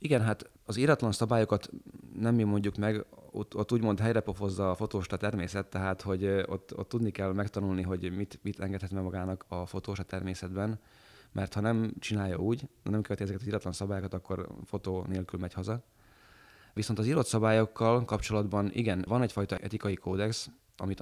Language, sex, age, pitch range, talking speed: Hungarian, male, 20-39, 95-105 Hz, 170 wpm